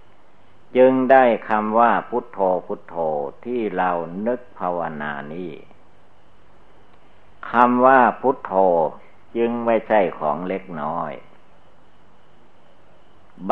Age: 60-79